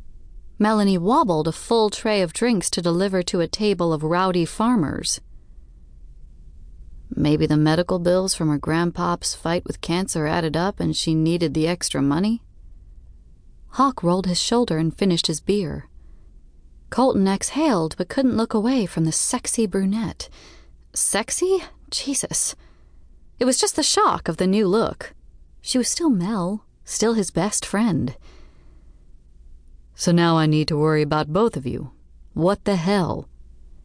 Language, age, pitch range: English, 30-49, 145-205 Hz